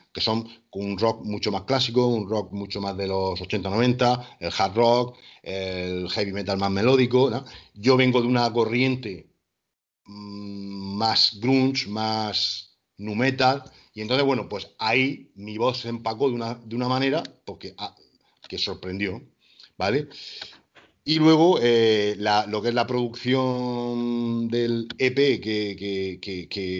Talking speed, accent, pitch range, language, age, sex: 140 wpm, Spanish, 95-120 Hz, Spanish, 40-59, male